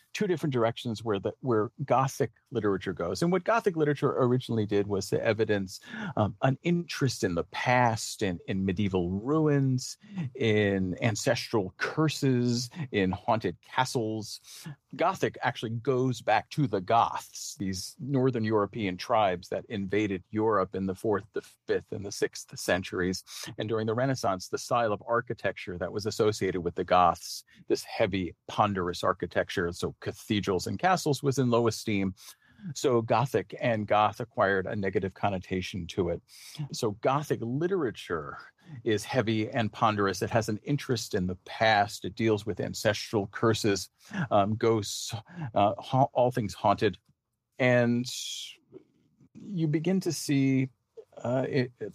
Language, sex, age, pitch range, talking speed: English, male, 40-59, 100-130 Hz, 145 wpm